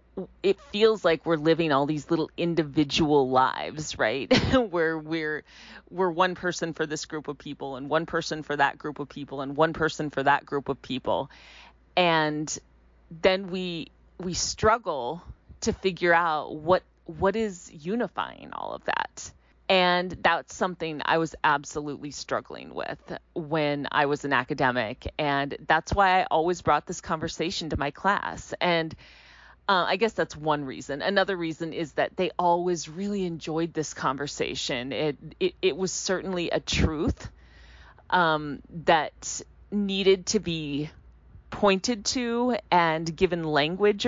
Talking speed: 150 wpm